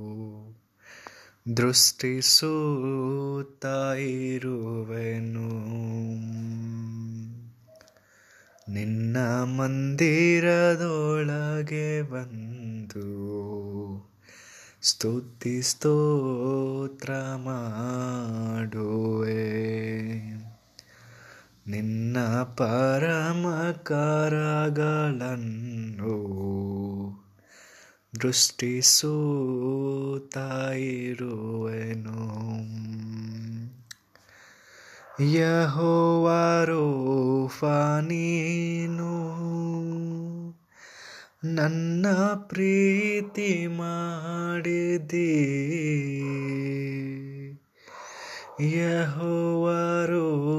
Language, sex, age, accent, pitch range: Kannada, male, 20-39, native, 115-165 Hz